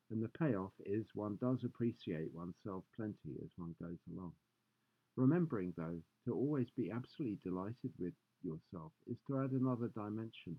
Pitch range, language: 90-125 Hz, English